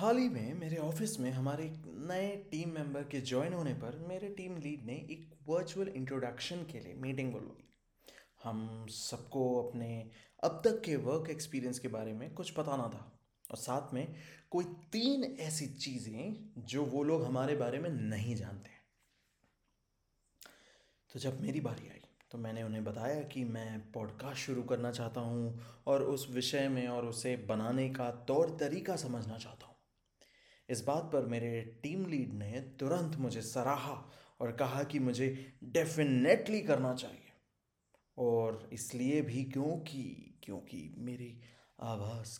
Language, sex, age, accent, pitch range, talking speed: Hindi, male, 20-39, native, 120-155 Hz, 155 wpm